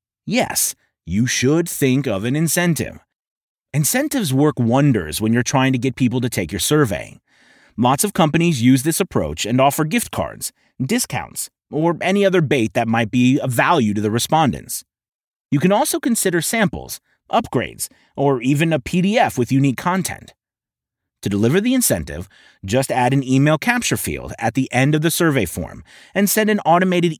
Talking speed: 170 wpm